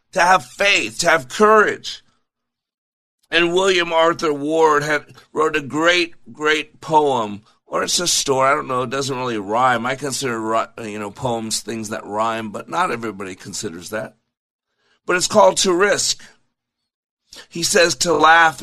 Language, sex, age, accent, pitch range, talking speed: English, male, 50-69, American, 120-155 Hz, 160 wpm